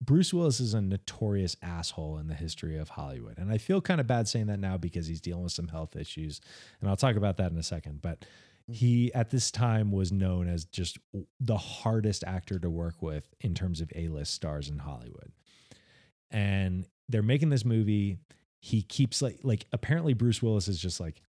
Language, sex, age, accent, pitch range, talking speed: English, male, 30-49, American, 85-110 Hz, 205 wpm